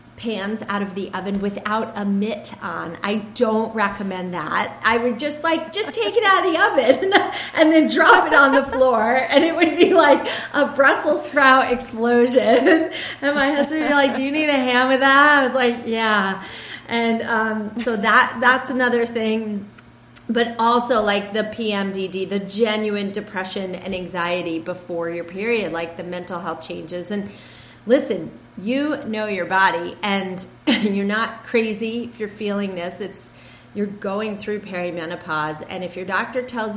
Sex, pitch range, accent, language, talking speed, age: female, 185-240 Hz, American, English, 175 wpm, 30-49